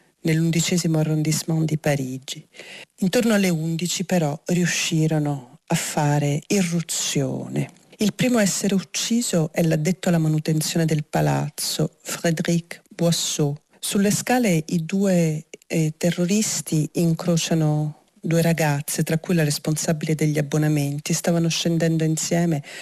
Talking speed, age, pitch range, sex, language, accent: 115 wpm, 40-59, 150-175 Hz, female, Italian, native